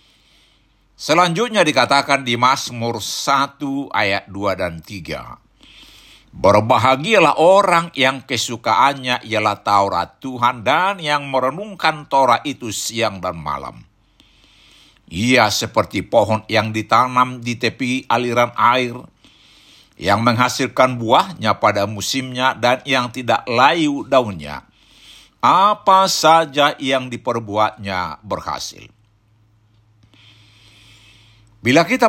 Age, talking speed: 60-79, 95 wpm